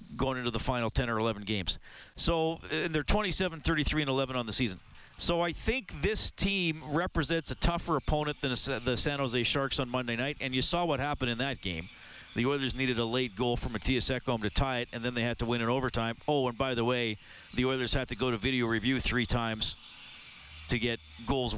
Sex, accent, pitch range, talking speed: male, American, 120-170 Hz, 225 wpm